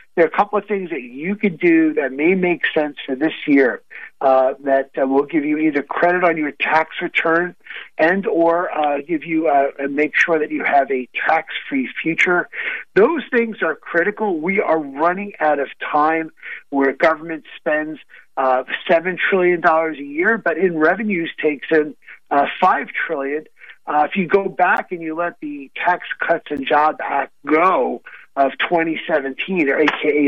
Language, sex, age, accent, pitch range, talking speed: English, male, 50-69, American, 145-190 Hz, 175 wpm